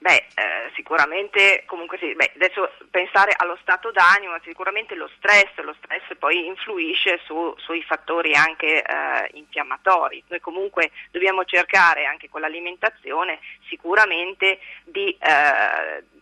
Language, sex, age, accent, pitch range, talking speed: Italian, female, 30-49, native, 165-205 Hz, 125 wpm